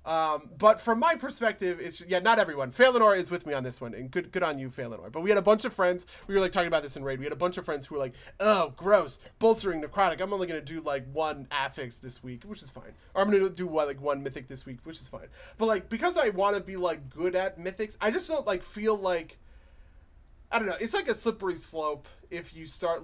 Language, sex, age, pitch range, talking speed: English, male, 30-49, 145-195 Hz, 265 wpm